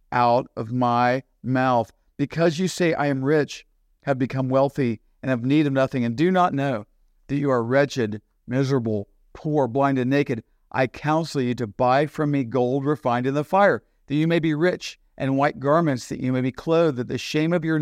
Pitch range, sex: 125-155 Hz, male